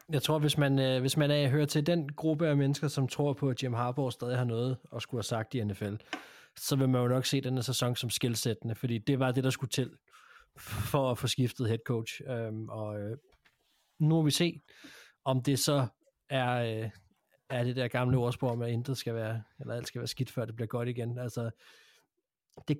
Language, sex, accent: Danish, male, native